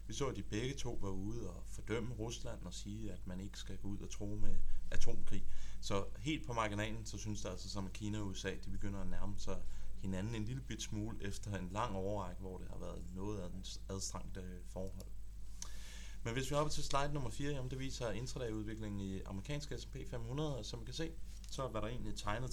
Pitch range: 95-110 Hz